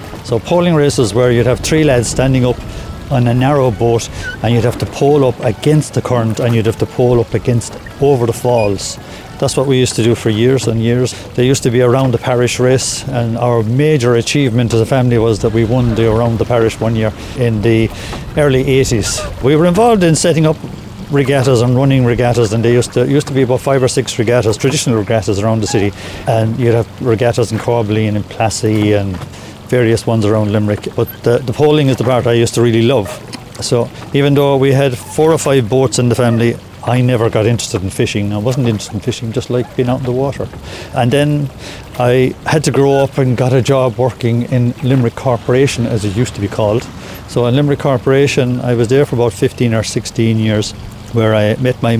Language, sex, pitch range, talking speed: English, male, 110-130 Hz, 225 wpm